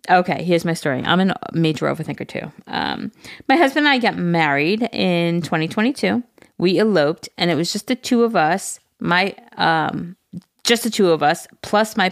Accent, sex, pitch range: American, female, 165-210 Hz